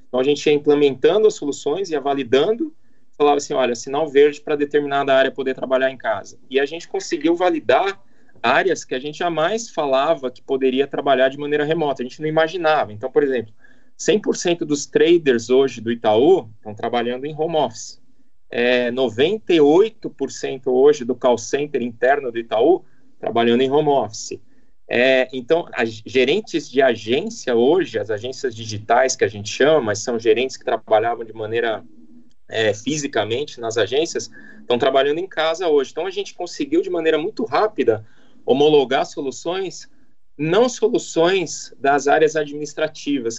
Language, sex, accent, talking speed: Portuguese, male, Brazilian, 155 wpm